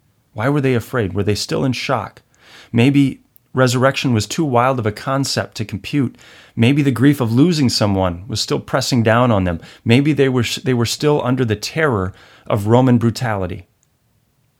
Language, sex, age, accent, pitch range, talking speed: English, male, 40-59, American, 115-145 Hz, 175 wpm